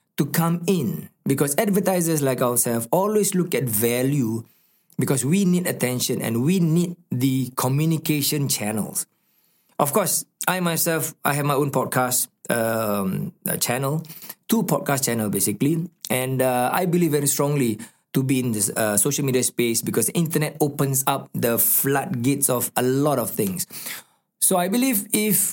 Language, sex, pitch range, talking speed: Malay, male, 125-175 Hz, 155 wpm